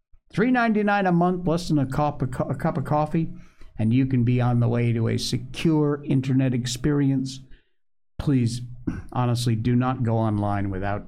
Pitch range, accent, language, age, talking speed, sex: 115-175 Hz, American, English, 60-79, 150 wpm, male